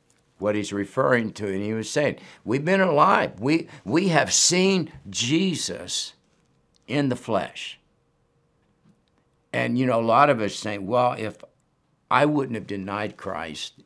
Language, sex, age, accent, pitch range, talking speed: English, male, 60-79, American, 95-125 Hz, 145 wpm